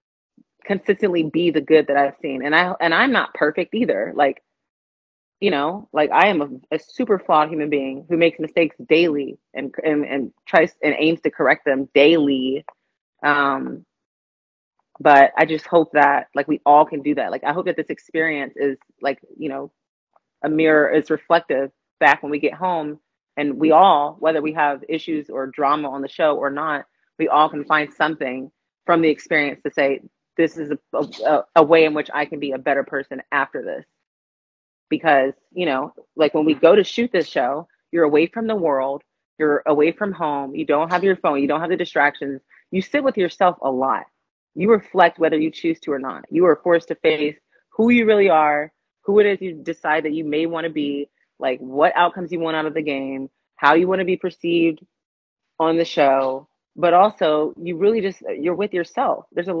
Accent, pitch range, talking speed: American, 145-170 Hz, 205 wpm